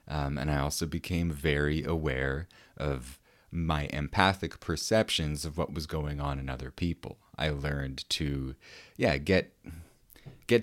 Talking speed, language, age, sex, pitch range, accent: 140 wpm, English, 30-49, male, 70-90 Hz, American